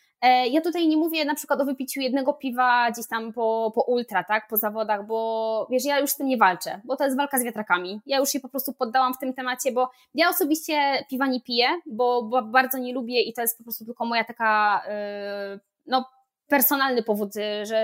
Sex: female